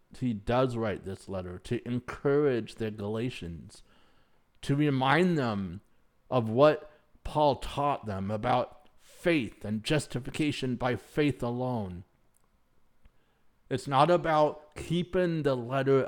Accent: American